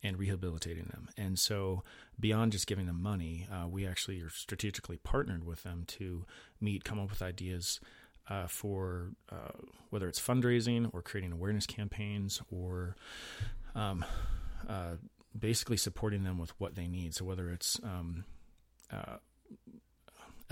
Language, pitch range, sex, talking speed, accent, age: English, 90-110 Hz, male, 145 wpm, American, 30-49